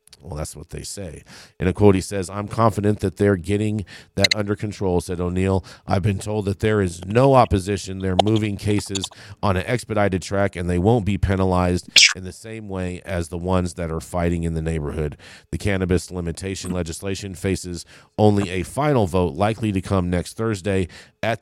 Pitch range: 90-105 Hz